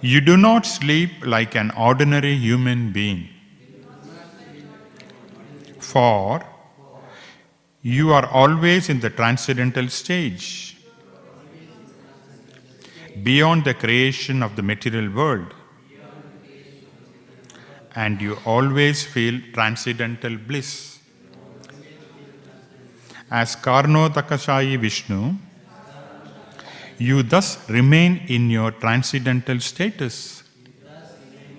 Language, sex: English, male